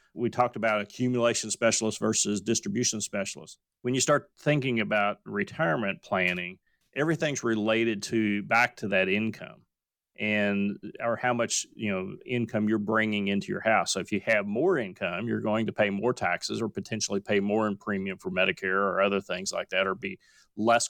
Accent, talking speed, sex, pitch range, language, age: American, 180 wpm, male, 100-115 Hz, English, 30-49